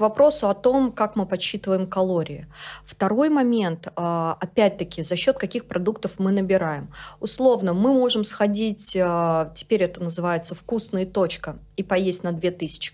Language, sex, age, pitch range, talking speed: Russian, female, 20-39, 180-245 Hz, 135 wpm